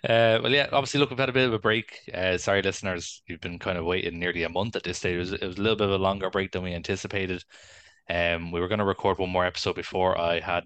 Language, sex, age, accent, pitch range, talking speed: English, male, 20-39, Irish, 85-100 Hz, 285 wpm